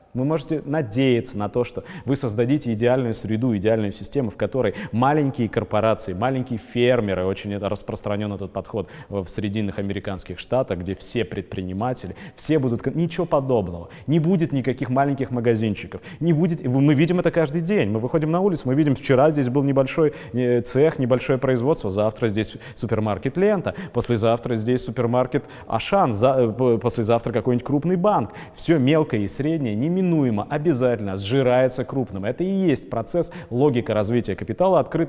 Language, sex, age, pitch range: Russian, male, 20-39, 115-160 Hz